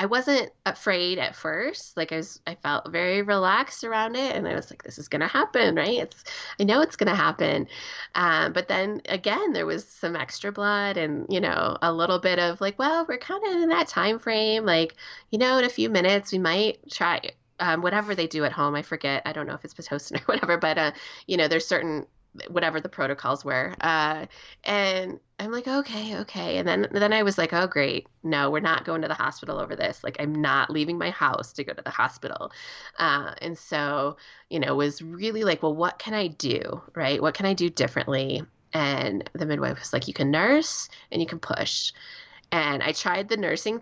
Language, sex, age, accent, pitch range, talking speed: English, female, 20-39, American, 150-205 Hz, 225 wpm